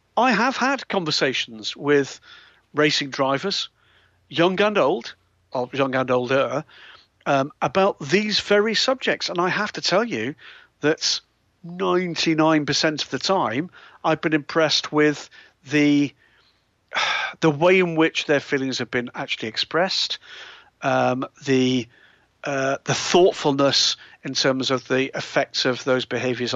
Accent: British